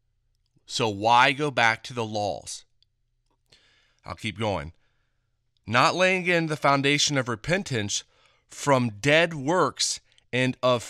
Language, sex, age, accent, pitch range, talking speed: English, male, 30-49, American, 115-140 Hz, 120 wpm